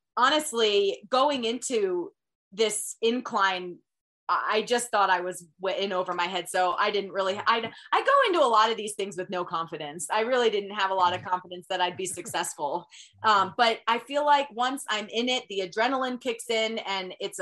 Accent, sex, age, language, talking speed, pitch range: American, female, 20-39, English, 195 wpm, 185-230 Hz